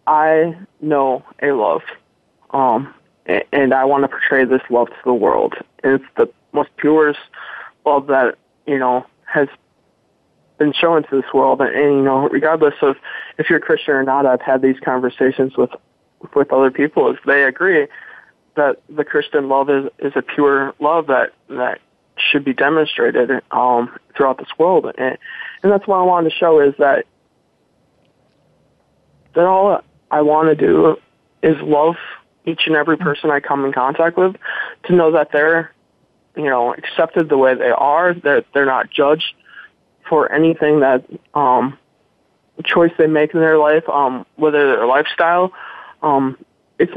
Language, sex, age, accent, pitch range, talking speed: English, male, 20-39, American, 135-170 Hz, 165 wpm